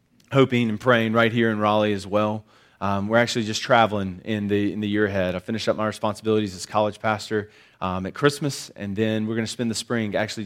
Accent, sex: American, male